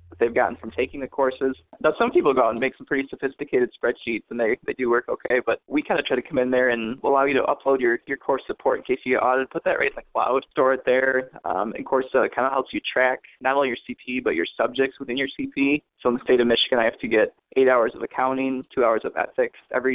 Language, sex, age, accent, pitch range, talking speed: English, male, 20-39, American, 125-155 Hz, 280 wpm